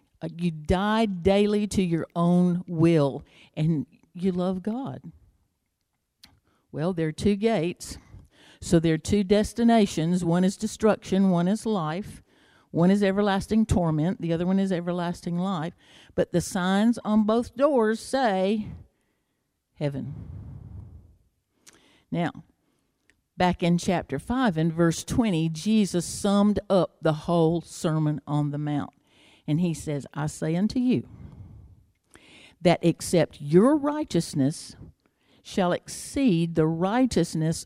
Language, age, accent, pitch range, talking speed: English, 50-69, American, 155-205 Hz, 125 wpm